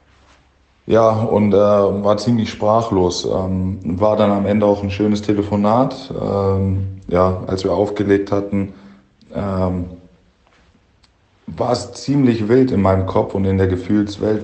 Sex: male